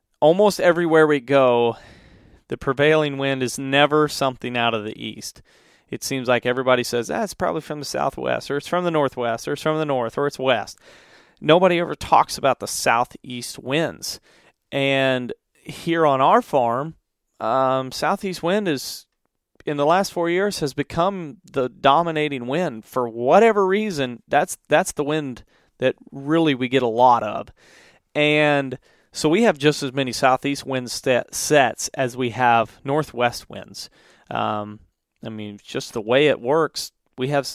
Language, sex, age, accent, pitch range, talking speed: English, male, 30-49, American, 125-155 Hz, 165 wpm